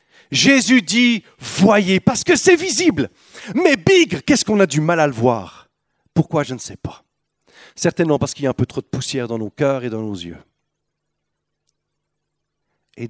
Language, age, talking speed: French, 40-59, 185 wpm